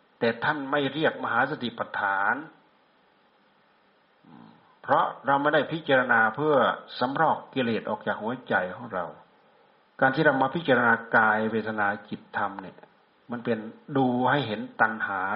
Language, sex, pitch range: Thai, male, 110-135 Hz